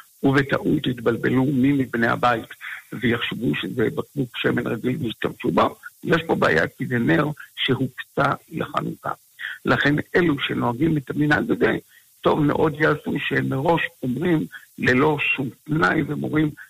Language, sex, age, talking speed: Hebrew, male, 60-79, 125 wpm